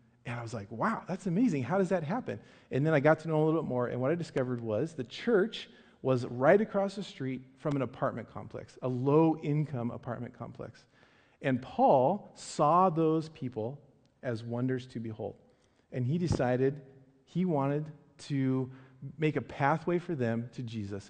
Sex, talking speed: male, 180 wpm